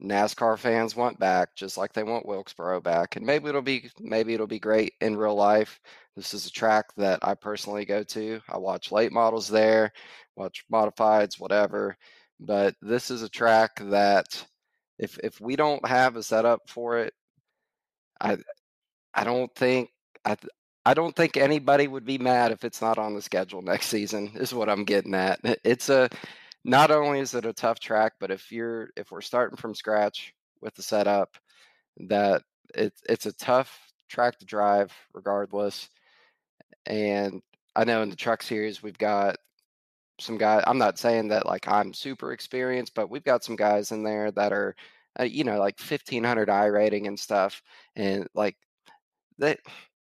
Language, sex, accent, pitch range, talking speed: English, male, American, 100-120 Hz, 175 wpm